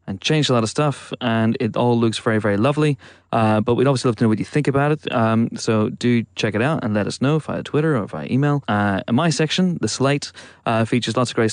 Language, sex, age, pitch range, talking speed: English, male, 30-49, 110-145 Hz, 265 wpm